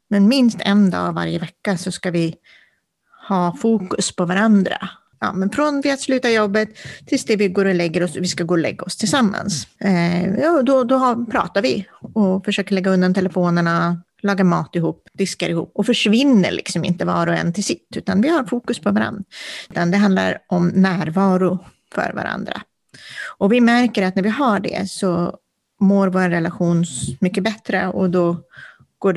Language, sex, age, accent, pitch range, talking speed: Swedish, female, 30-49, native, 175-205 Hz, 180 wpm